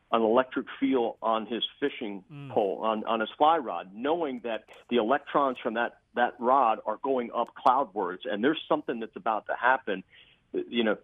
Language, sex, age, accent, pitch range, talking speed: English, male, 50-69, American, 110-145 Hz, 180 wpm